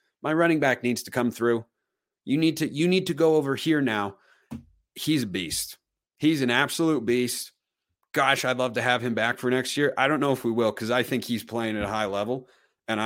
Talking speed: 230 wpm